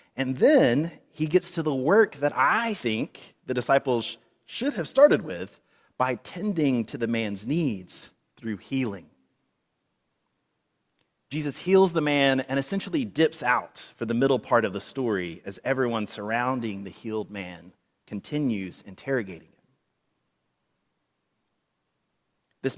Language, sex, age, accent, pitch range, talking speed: English, male, 30-49, American, 120-180 Hz, 130 wpm